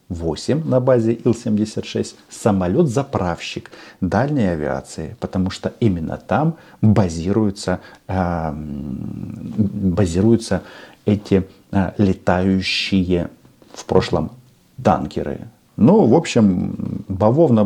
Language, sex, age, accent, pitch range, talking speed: Russian, male, 50-69, native, 95-120 Hz, 75 wpm